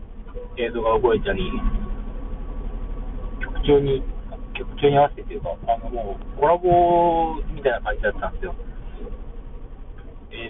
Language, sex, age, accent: Japanese, male, 40-59, native